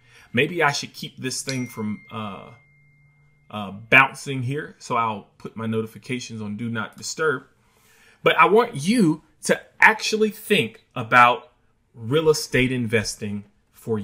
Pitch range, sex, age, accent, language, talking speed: 115-170 Hz, male, 30-49, American, English, 135 wpm